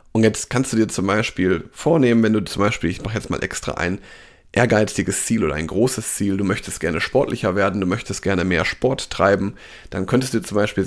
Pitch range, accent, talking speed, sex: 95-120 Hz, German, 220 wpm, male